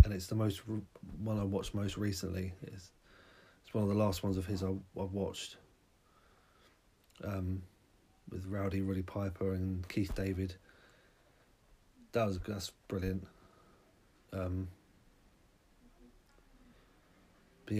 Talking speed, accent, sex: 120 wpm, British, male